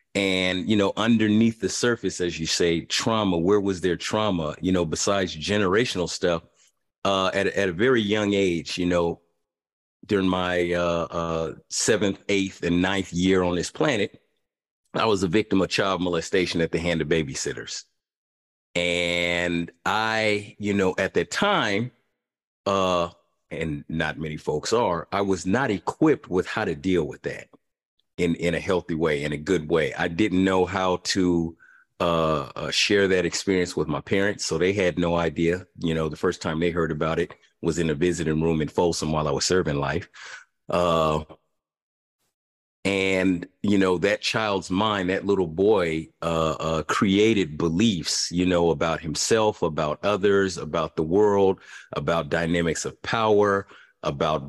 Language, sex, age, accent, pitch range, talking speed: English, male, 40-59, American, 85-100 Hz, 165 wpm